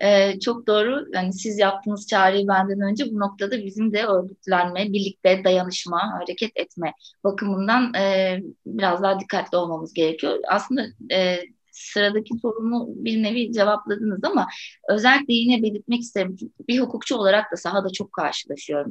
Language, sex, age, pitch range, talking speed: Turkish, female, 20-39, 185-230 Hz, 140 wpm